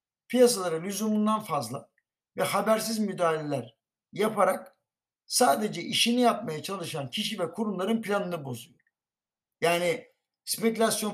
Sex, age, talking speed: male, 60-79, 95 wpm